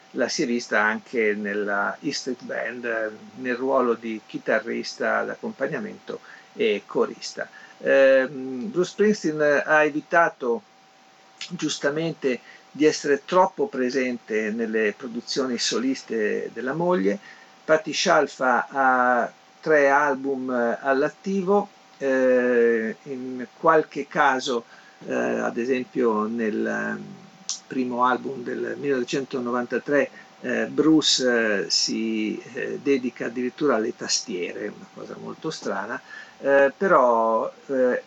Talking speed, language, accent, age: 100 wpm, Italian, native, 50-69